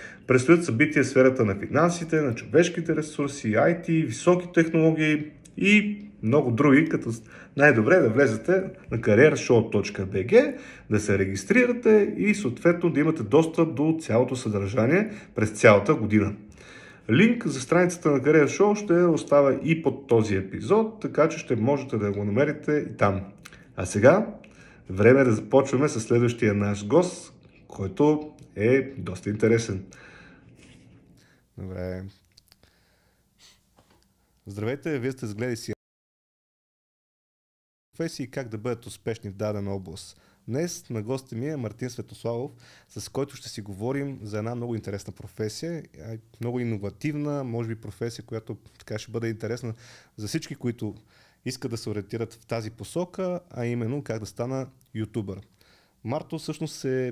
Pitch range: 110-150 Hz